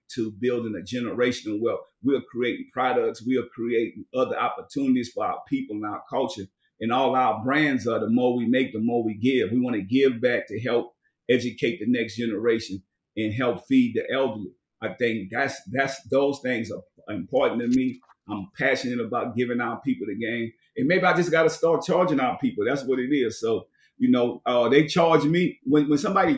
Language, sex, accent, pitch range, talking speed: English, male, American, 115-150 Hz, 200 wpm